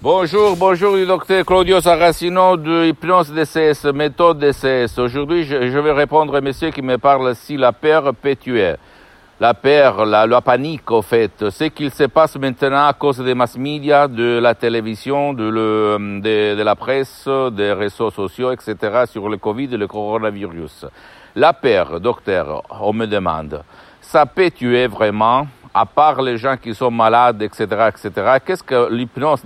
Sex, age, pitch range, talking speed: male, 60-79, 115-145 Hz, 165 wpm